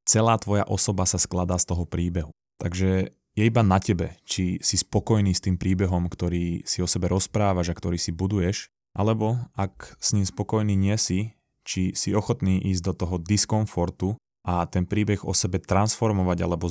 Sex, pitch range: male, 90-100 Hz